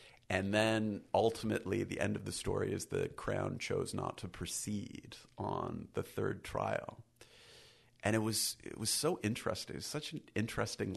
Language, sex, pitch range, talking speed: English, male, 100-120 Hz, 170 wpm